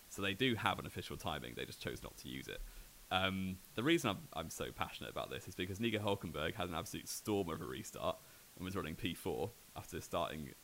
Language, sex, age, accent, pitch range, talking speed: English, male, 20-39, British, 90-110 Hz, 225 wpm